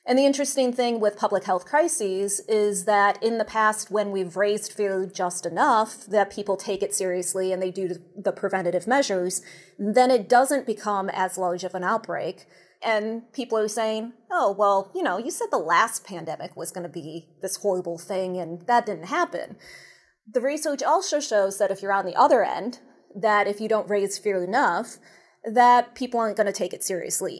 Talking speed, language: 195 wpm, English